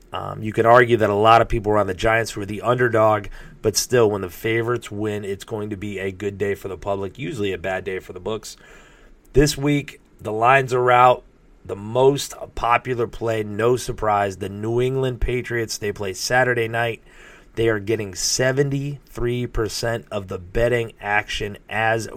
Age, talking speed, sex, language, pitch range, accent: 30-49, 185 wpm, male, English, 105-125 Hz, American